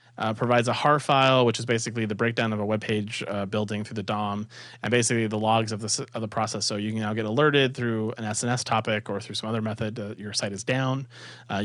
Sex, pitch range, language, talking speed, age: male, 110-125 Hz, English, 260 wpm, 30-49